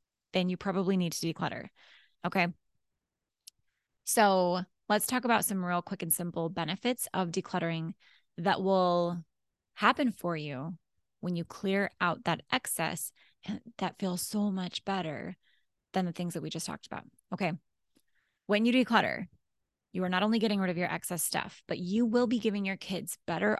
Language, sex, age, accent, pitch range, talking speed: English, female, 20-39, American, 170-210 Hz, 165 wpm